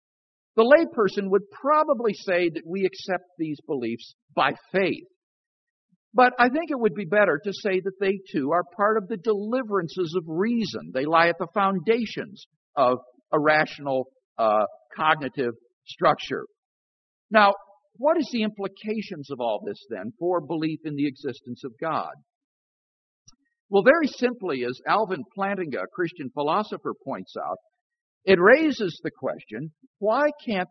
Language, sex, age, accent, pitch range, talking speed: English, male, 50-69, American, 165-245 Hz, 145 wpm